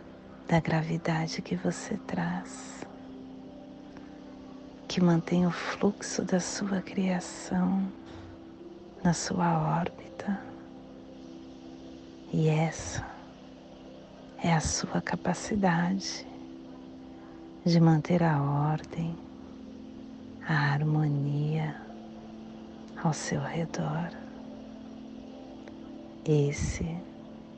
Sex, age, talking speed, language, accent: female, 40-59, 65 wpm, Portuguese, Brazilian